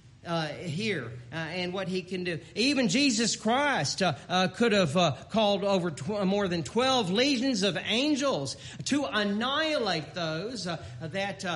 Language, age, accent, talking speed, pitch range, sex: English, 40-59, American, 155 wpm, 140-230 Hz, male